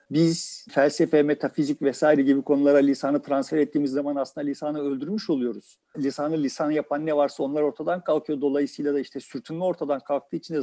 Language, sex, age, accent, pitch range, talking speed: Turkish, male, 50-69, native, 145-215 Hz, 170 wpm